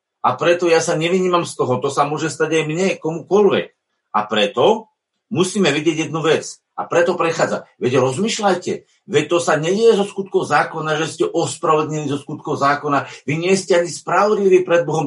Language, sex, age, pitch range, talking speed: Slovak, male, 50-69, 170-200 Hz, 180 wpm